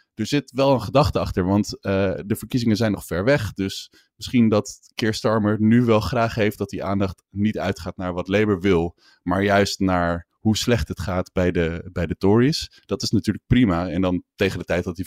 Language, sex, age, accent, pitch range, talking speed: Dutch, male, 20-39, Dutch, 90-110 Hz, 215 wpm